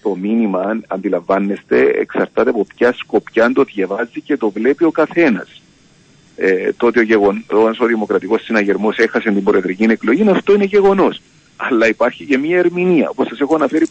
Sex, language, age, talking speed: male, Greek, 50-69, 170 wpm